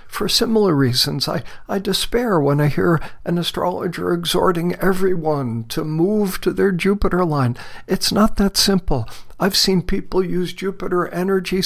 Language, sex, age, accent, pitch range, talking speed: English, male, 60-79, American, 160-200 Hz, 150 wpm